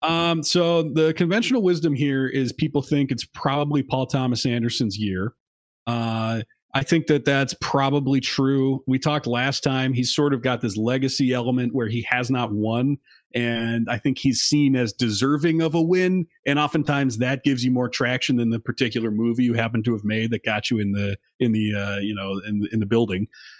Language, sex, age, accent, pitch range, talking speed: English, male, 30-49, American, 120-150 Hz, 200 wpm